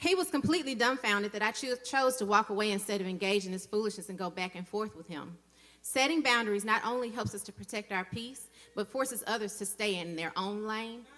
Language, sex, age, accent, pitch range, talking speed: English, female, 30-49, American, 185-245 Hz, 220 wpm